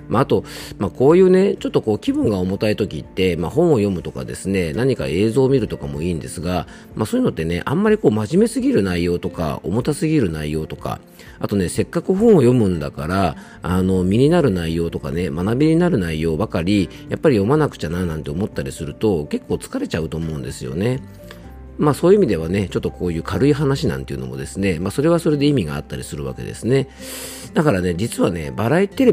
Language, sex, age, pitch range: Japanese, male, 40-59, 85-125 Hz